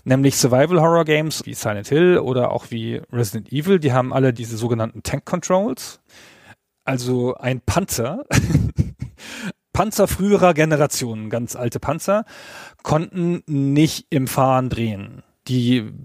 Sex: male